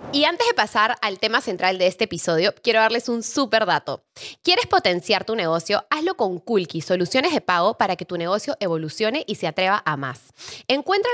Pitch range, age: 180-245 Hz, 10-29